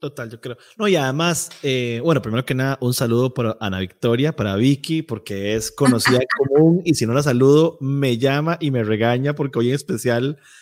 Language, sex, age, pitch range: Spanish, male, 30-49, 125-170 Hz